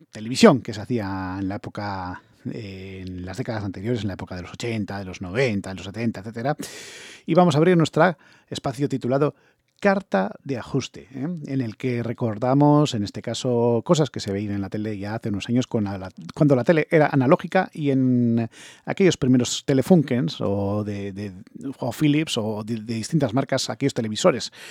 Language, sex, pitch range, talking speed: English, male, 110-145 Hz, 185 wpm